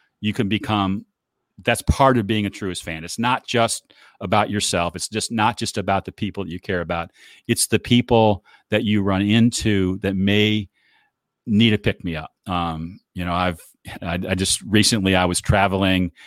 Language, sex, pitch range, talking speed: English, male, 90-105 Hz, 190 wpm